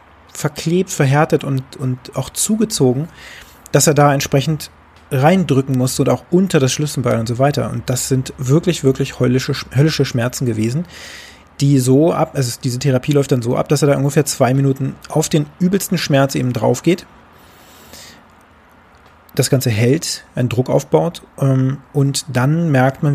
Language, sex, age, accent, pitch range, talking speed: German, male, 30-49, German, 125-145 Hz, 160 wpm